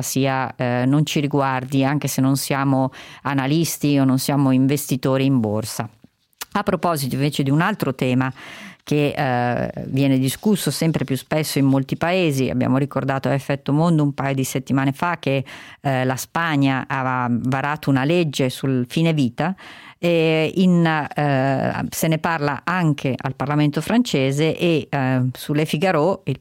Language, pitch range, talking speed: Italian, 130-155 Hz, 160 wpm